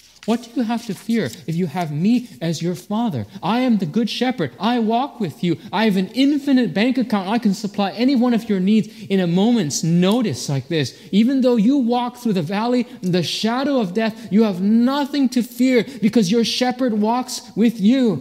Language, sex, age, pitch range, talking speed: English, male, 30-49, 150-230 Hz, 210 wpm